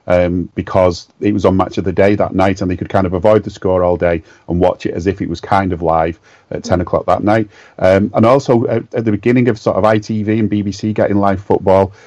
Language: English